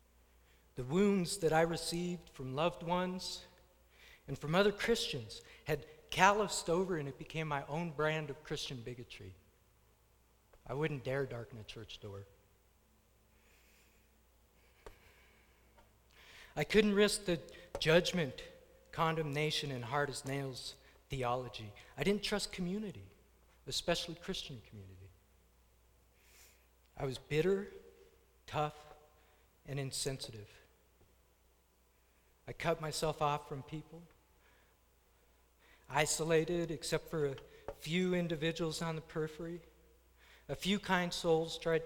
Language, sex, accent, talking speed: English, male, American, 110 wpm